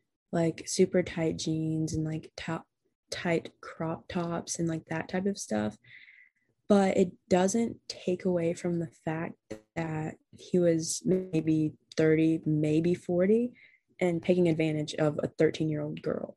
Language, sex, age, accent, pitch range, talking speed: English, female, 20-39, American, 155-185 Hz, 145 wpm